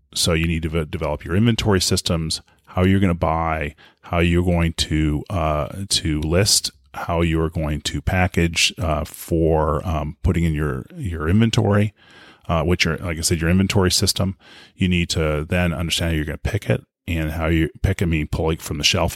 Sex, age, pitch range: male, 30-49, 80-95 Hz